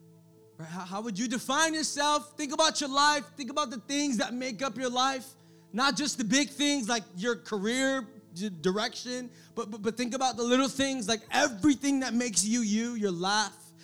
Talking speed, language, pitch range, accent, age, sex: 185 wpm, English, 205-305 Hz, American, 20-39, male